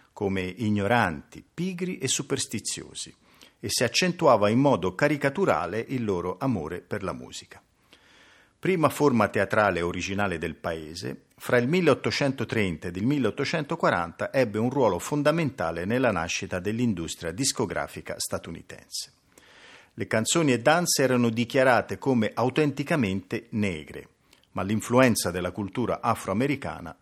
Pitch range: 95-135 Hz